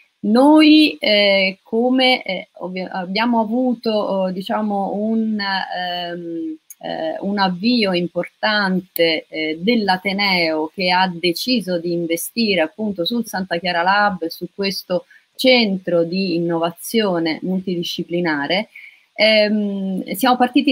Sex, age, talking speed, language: female, 30-49, 95 wpm, Italian